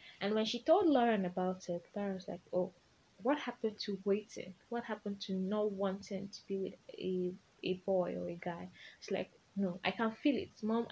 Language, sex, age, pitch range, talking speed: English, female, 10-29, 185-245 Hz, 205 wpm